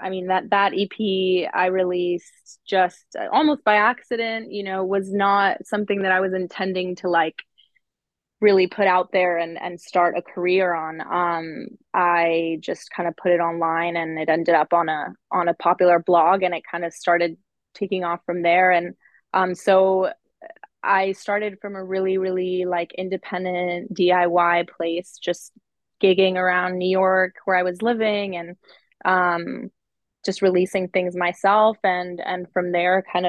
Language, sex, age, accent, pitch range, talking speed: English, female, 20-39, American, 175-195 Hz, 165 wpm